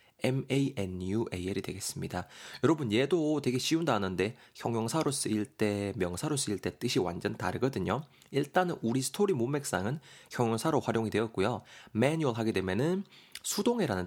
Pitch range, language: 105-135 Hz, Korean